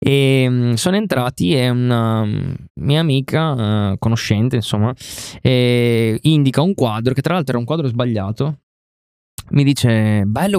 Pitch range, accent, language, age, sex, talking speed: 115-135 Hz, native, Italian, 20-39, male, 135 wpm